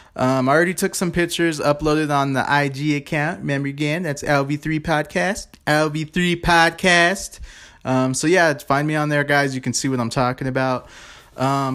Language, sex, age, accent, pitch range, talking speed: English, male, 20-39, American, 120-170 Hz, 185 wpm